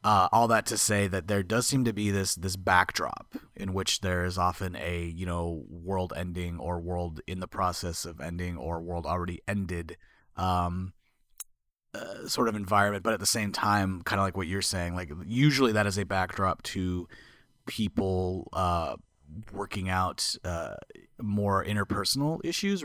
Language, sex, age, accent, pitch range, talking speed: English, male, 30-49, American, 90-105 Hz, 175 wpm